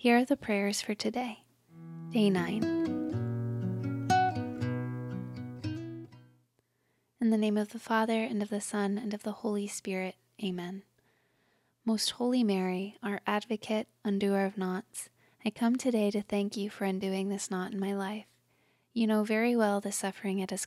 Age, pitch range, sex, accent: 20-39, 190-220 Hz, female, American